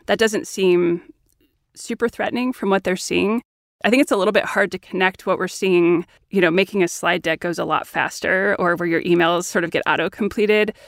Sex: female